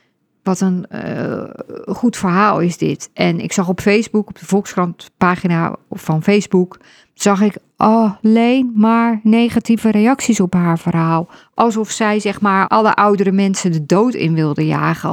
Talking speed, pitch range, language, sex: 155 wpm, 170-210 Hz, Dutch, female